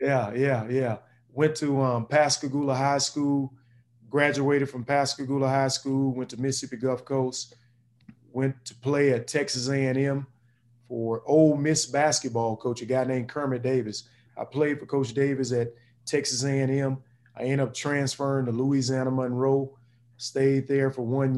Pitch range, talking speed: 125-140 Hz, 150 wpm